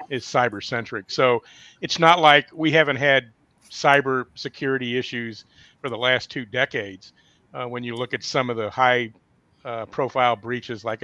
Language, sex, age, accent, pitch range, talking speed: English, male, 50-69, American, 115-130 Hz, 170 wpm